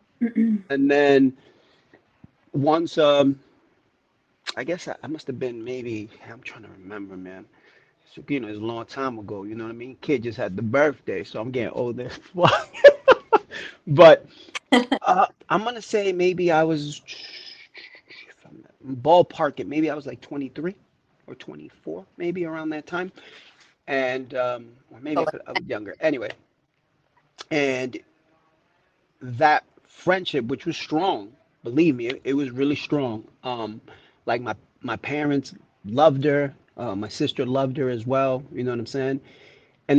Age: 30-49